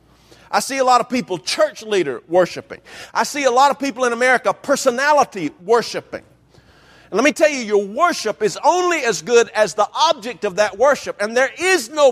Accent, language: American, English